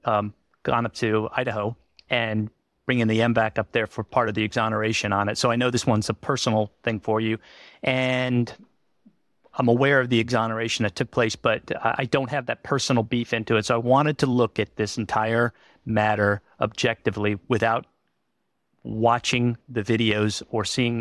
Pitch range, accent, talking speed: 110-125 Hz, American, 180 wpm